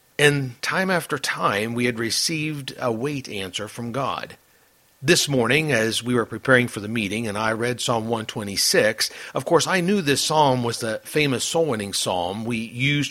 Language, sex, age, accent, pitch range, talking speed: English, male, 50-69, American, 120-160 Hz, 185 wpm